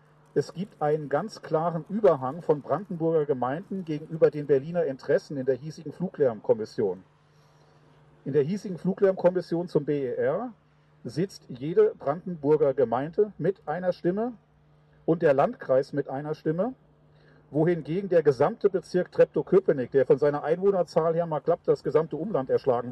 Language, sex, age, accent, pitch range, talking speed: German, male, 50-69, German, 150-200 Hz, 135 wpm